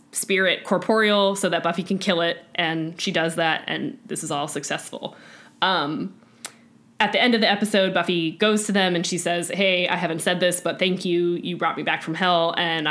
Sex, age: female, 10-29